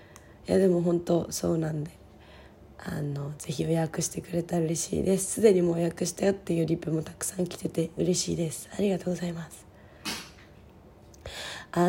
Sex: female